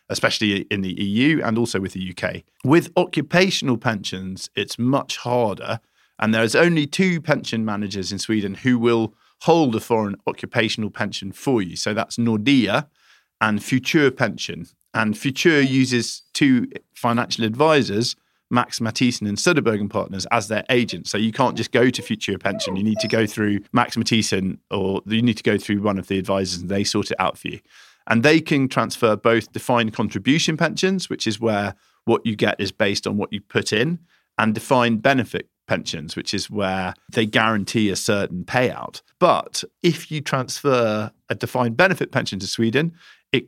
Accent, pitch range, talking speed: British, 105-125 Hz, 180 wpm